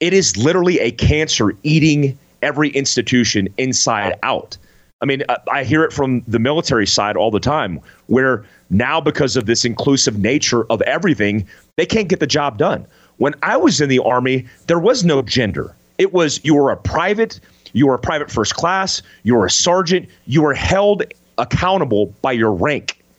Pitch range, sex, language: 115-155 Hz, male, English